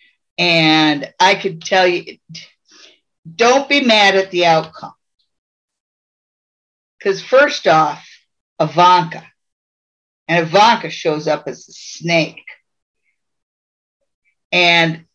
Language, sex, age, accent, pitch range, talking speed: English, female, 50-69, American, 165-200 Hz, 90 wpm